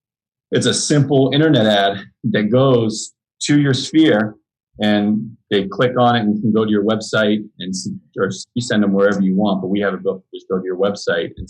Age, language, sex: 30-49, English, male